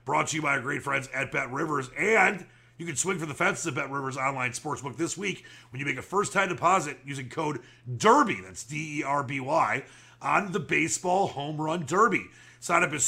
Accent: American